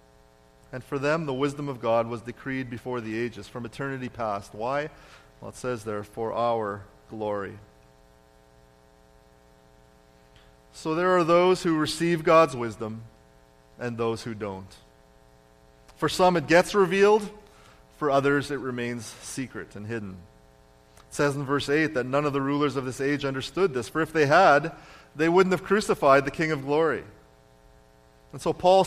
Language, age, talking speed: English, 30-49, 160 wpm